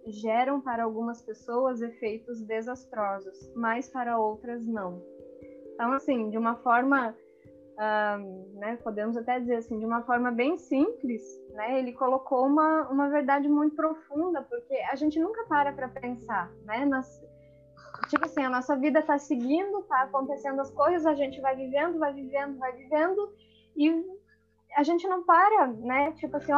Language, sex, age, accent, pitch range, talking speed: Portuguese, female, 10-29, Brazilian, 235-295 Hz, 160 wpm